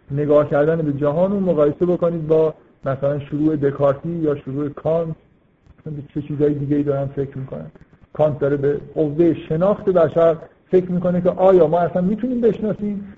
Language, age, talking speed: Persian, 50-69, 155 wpm